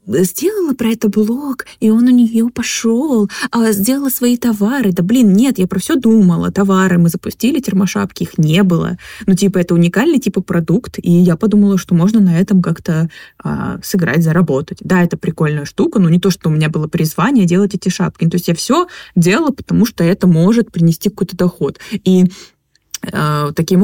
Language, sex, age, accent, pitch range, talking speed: Russian, female, 20-39, native, 170-215 Hz, 185 wpm